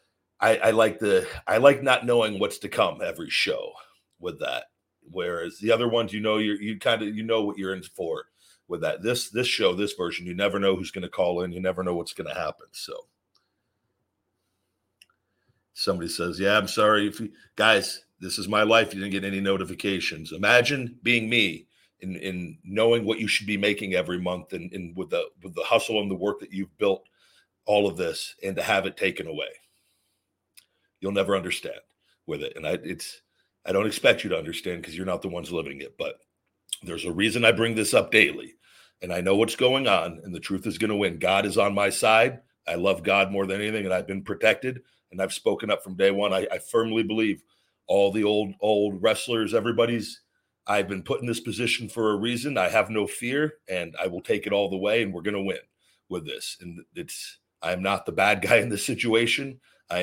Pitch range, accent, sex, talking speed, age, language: 100-120 Hz, American, male, 220 wpm, 50-69, English